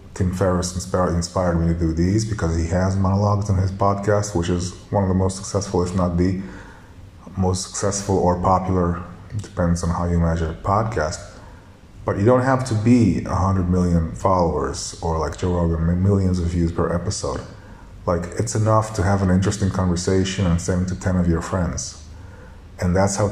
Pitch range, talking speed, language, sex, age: 85-100 Hz, 180 wpm, English, male, 30-49